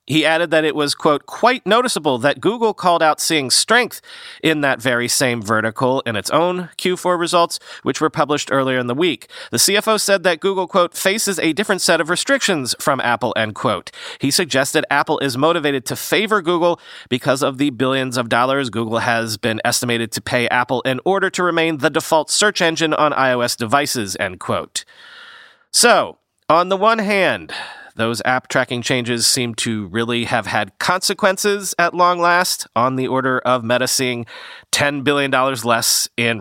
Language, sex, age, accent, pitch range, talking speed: English, male, 40-59, American, 125-185 Hz, 180 wpm